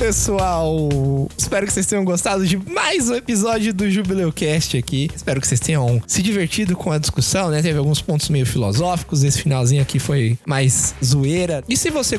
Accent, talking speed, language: Brazilian, 180 wpm, Portuguese